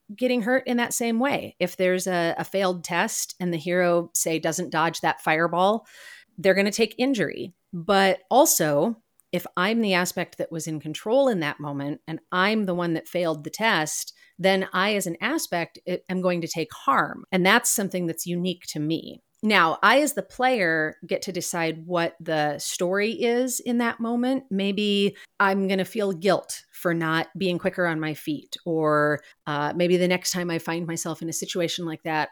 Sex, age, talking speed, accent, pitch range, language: female, 30-49, 195 wpm, American, 160-200 Hz, English